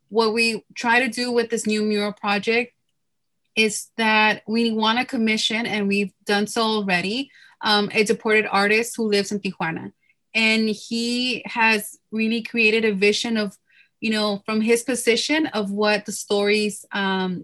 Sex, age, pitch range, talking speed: female, 20-39, 200-230 Hz, 160 wpm